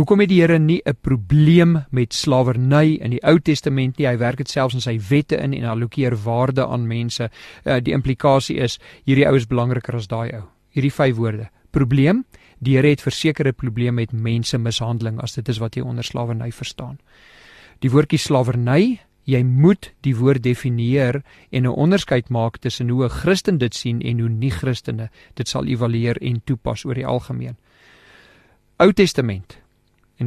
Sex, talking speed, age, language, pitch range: male, 170 wpm, 40-59, English, 120-140 Hz